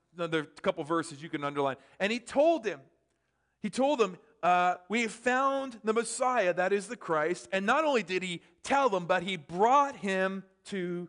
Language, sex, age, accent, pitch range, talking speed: English, male, 40-59, American, 175-230 Hz, 195 wpm